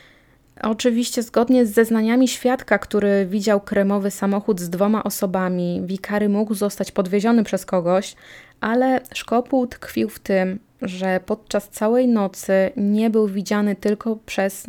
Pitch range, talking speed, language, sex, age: 195-225 Hz, 130 wpm, Polish, female, 20-39